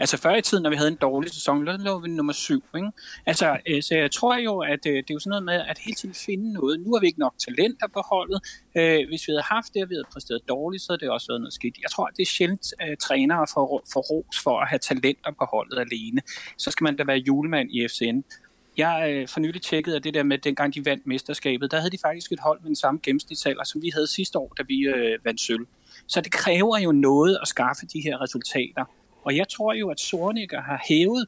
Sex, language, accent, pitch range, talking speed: male, Danish, native, 150-215 Hz, 255 wpm